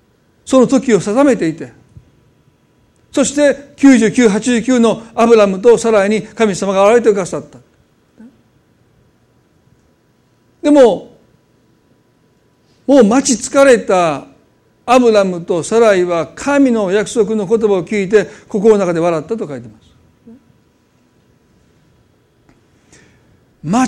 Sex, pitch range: male, 170-245 Hz